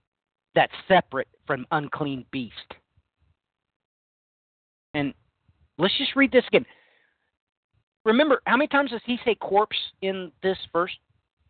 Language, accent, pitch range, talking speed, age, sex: English, American, 145-220 Hz, 115 wpm, 40-59, male